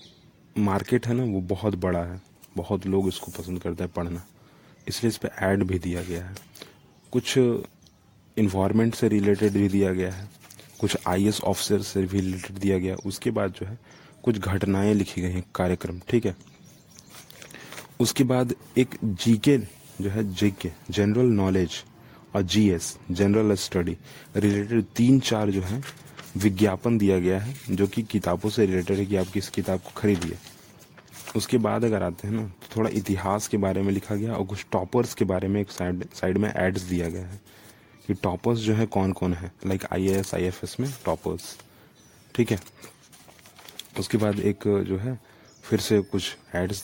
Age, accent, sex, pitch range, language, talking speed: 30-49, native, male, 95-110 Hz, Hindi, 170 wpm